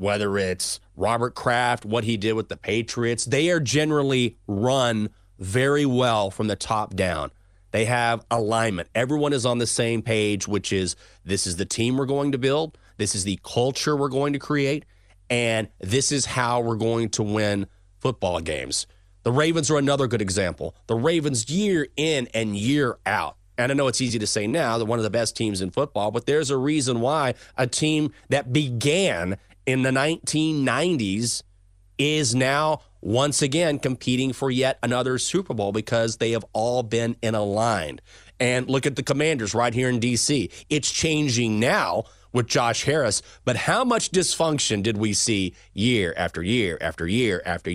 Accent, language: American, English